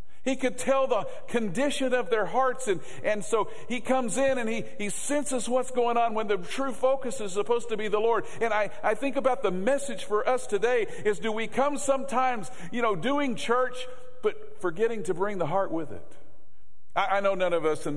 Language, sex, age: English, male, 50-69